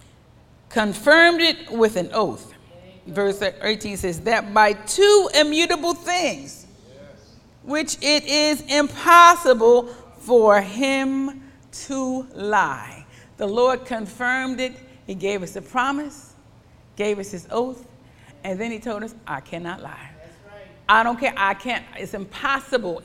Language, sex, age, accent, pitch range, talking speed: English, female, 40-59, American, 200-280 Hz, 130 wpm